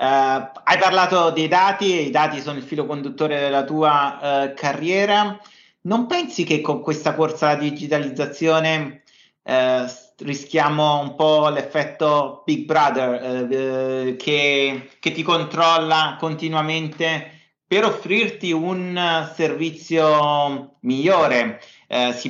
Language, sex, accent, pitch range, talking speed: Italian, male, native, 135-165 Hz, 100 wpm